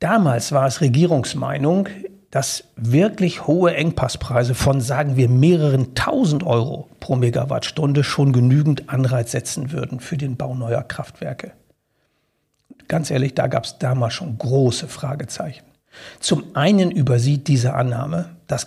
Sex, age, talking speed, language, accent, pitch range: male, 60-79, 130 wpm, German, German, 130-160 Hz